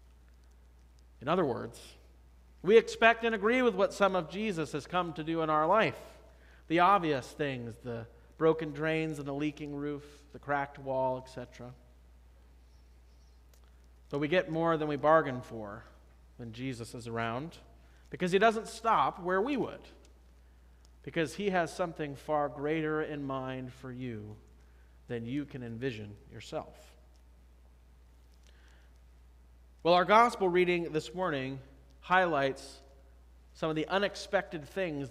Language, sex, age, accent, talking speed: English, male, 40-59, American, 135 wpm